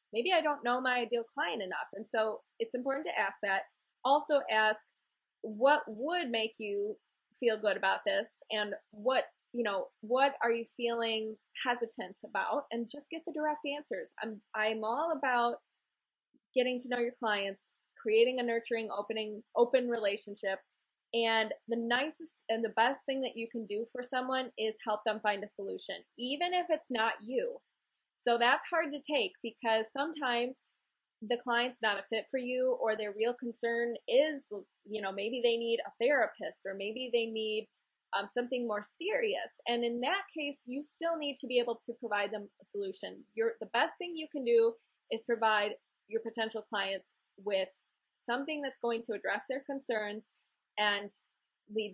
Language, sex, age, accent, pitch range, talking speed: English, female, 20-39, American, 220-275 Hz, 175 wpm